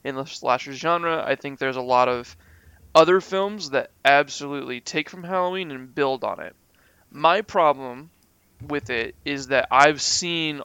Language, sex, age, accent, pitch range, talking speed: English, male, 20-39, American, 135-155 Hz, 165 wpm